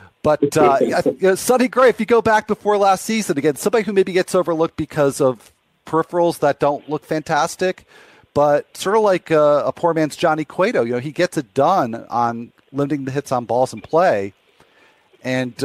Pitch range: 110-150 Hz